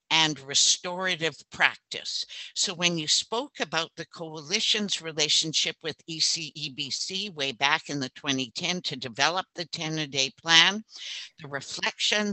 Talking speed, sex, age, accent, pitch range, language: 120 wpm, female, 60-79, American, 150-185 Hz, English